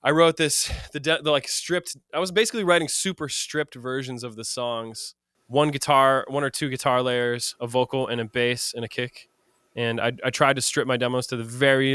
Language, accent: English, American